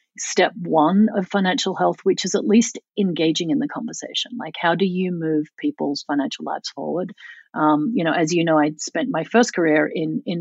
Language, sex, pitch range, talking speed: English, female, 160-220 Hz, 200 wpm